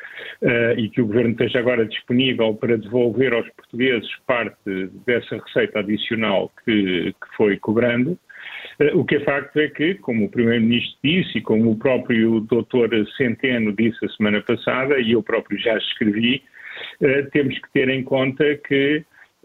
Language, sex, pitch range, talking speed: Portuguese, male, 115-145 Hz, 155 wpm